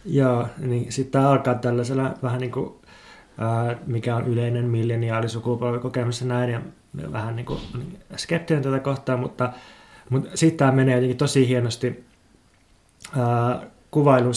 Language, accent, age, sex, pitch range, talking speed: Finnish, native, 20-39, male, 120-135 Hz, 135 wpm